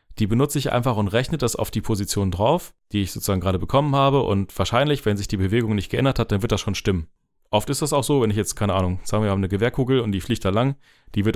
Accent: German